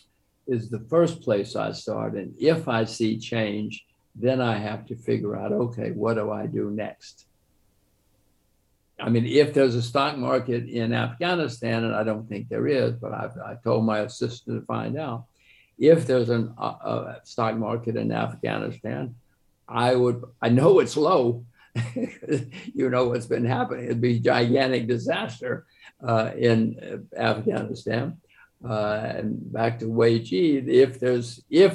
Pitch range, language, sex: 110-130 Hz, English, male